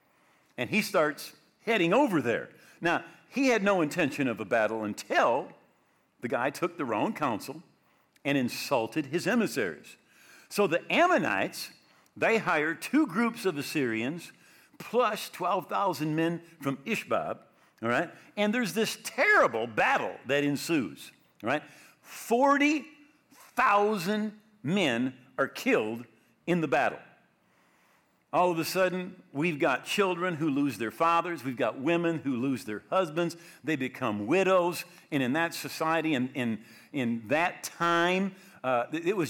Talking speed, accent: 135 wpm, American